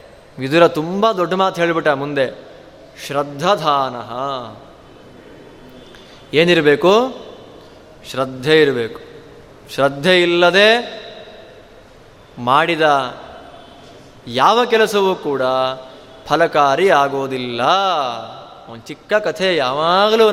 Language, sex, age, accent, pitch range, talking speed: Kannada, male, 20-39, native, 150-200 Hz, 65 wpm